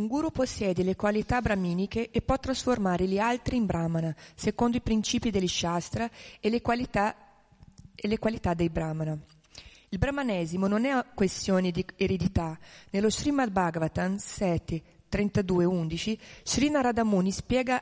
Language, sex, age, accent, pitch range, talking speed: Italian, female, 30-49, native, 175-230 Hz, 130 wpm